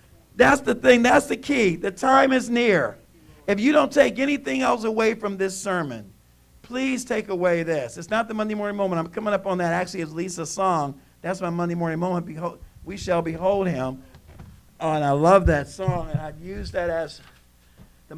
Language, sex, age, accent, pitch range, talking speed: English, male, 50-69, American, 135-195 Hz, 195 wpm